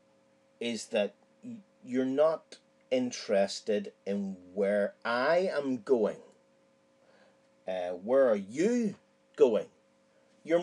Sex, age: male, 40-59